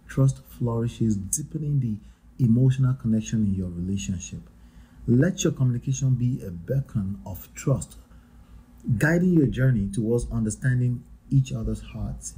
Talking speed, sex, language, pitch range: 120 wpm, male, English, 100-135 Hz